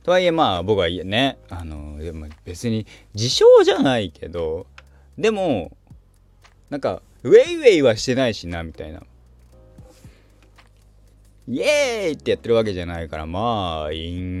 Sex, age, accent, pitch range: male, 20-39, native, 80-130 Hz